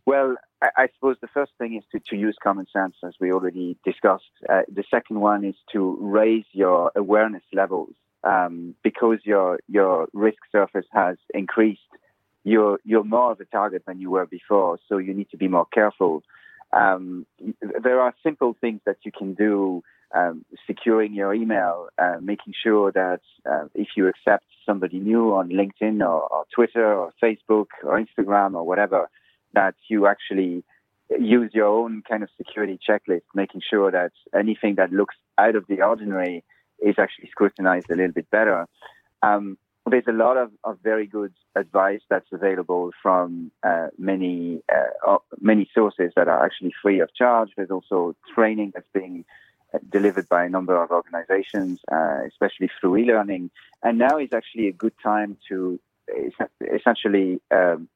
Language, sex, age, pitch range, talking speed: English, male, 30-49, 95-110 Hz, 165 wpm